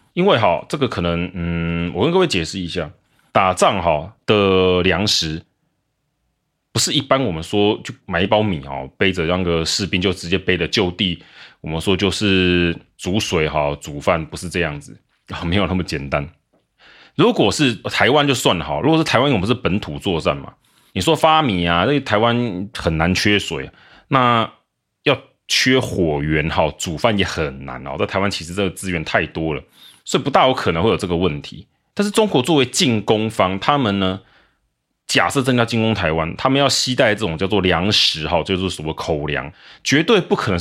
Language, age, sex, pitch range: Chinese, 30-49, male, 85-105 Hz